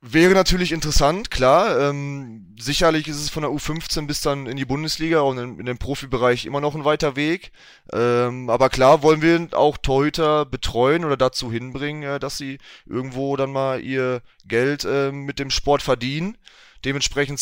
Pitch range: 110-140 Hz